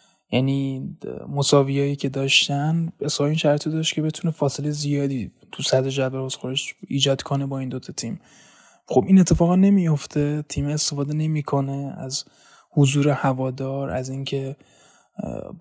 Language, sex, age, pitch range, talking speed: Persian, male, 20-39, 135-150 Hz, 140 wpm